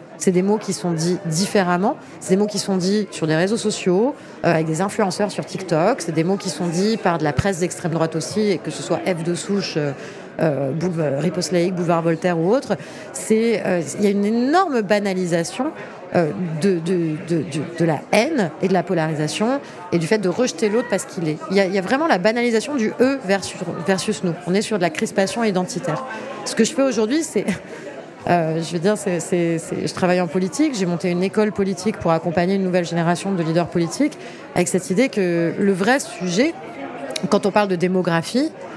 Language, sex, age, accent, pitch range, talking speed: French, female, 30-49, French, 170-210 Hz, 220 wpm